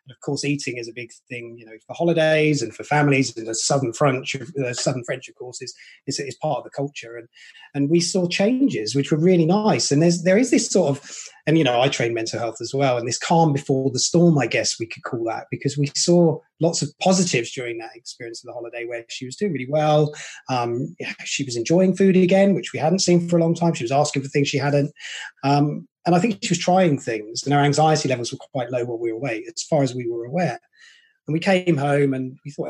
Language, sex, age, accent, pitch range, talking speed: English, male, 30-49, British, 125-170 Hz, 250 wpm